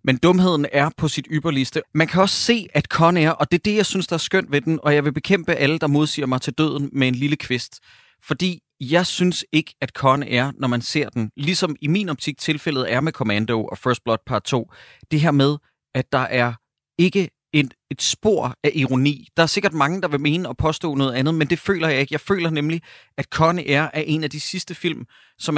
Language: Danish